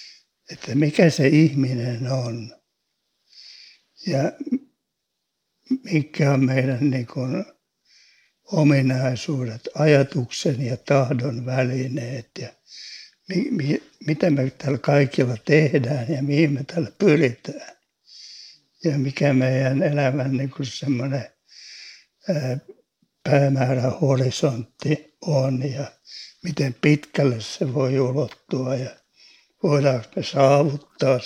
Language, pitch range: Finnish, 130-155 Hz